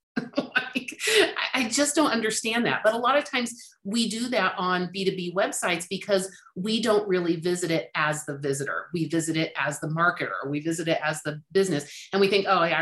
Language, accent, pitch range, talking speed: English, American, 155-205 Hz, 205 wpm